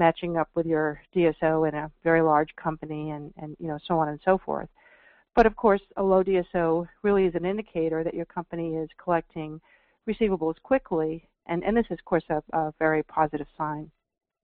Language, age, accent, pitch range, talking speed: English, 50-69, American, 155-185 Hz, 195 wpm